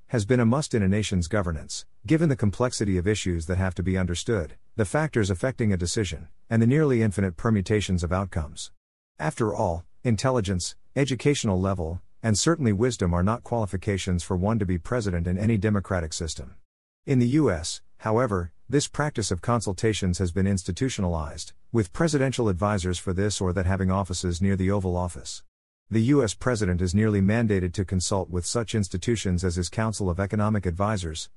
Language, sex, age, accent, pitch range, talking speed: English, male, 50-69, American, 90-115 Hz, 175 wpm